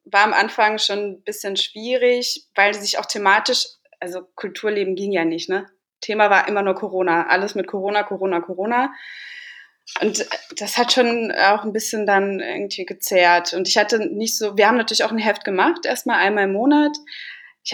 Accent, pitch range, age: German, 190-225 Hz, 20-39